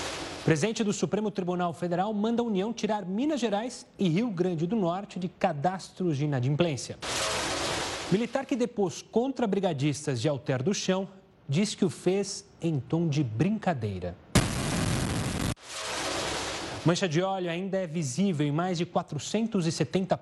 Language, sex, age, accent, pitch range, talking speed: Portuguese, male, 30-49, Brazilian, 150-195 Hz, 140 wpm